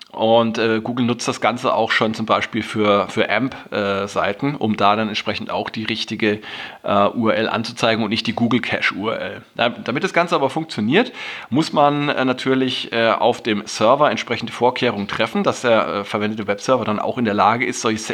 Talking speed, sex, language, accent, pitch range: 190 wpm, male, German, German, 105-125 Hz